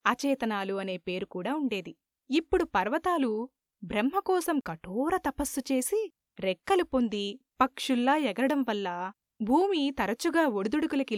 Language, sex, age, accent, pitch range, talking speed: Telugu, female, 20-39, native, 210-290 Hz, 95 wpm